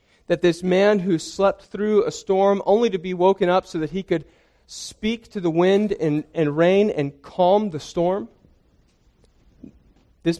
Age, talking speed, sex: 40-59, 165 wpm, male